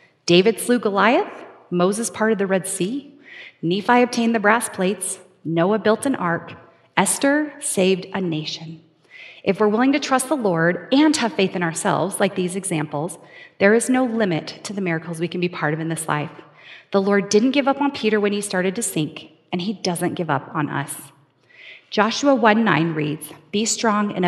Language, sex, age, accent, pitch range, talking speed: English, female, 30-49, American, 165-220 Hz, 190 wpm